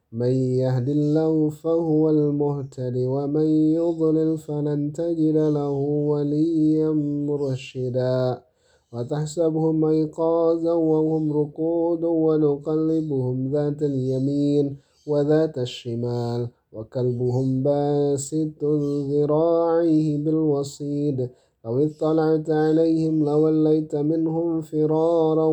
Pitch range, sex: 135-155 Hz, male